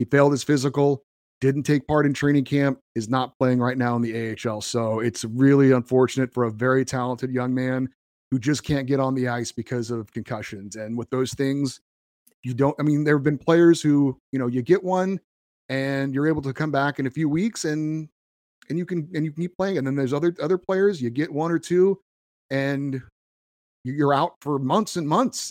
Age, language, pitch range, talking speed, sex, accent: 30-49, English, 125-150 Hz, 215 wpm, male, American